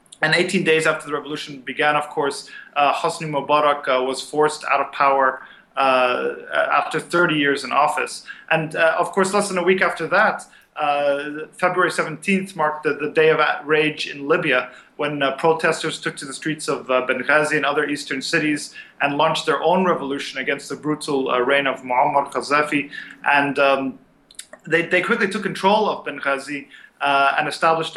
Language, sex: German, male